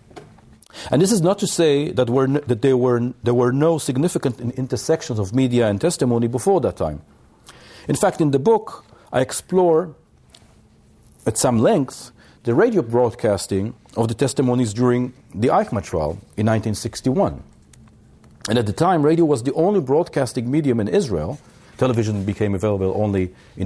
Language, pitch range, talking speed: English, 105-150 Hz, 155 wpm